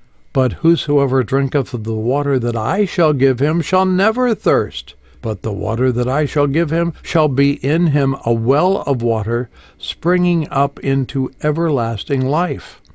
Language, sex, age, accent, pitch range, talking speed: English, male, 60-79, American, 120-160 Hz, 160 wpm